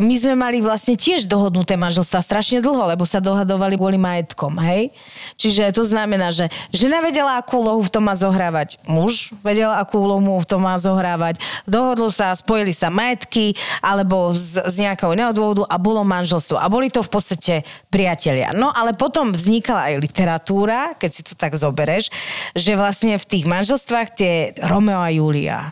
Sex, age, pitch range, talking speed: female, 30-49, 180-220 Hz, 170 wpm